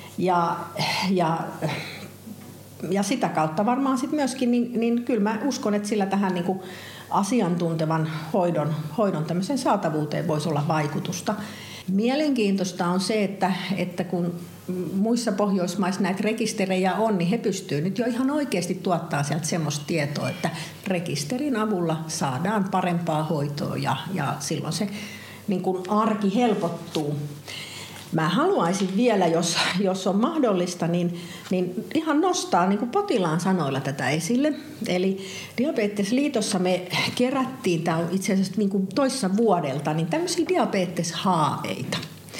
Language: Finnish